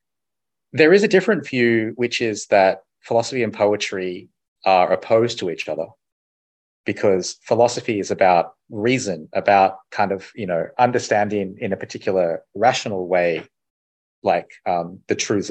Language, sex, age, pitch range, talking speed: English, male, 30-49, 95-125 Hz, 140 wpm